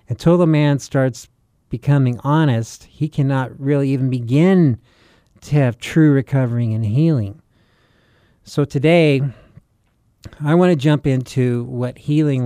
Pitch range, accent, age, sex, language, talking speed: 115-135 Hz, American, 40-59, male, English, 125 wpm